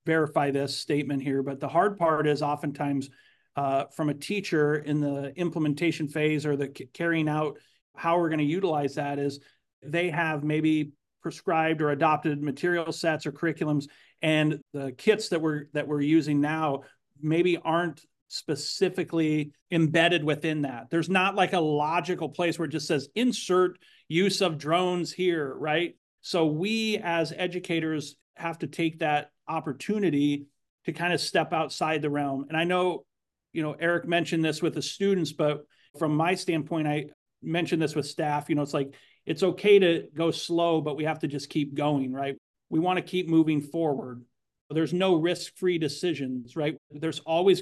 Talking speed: 170 wpm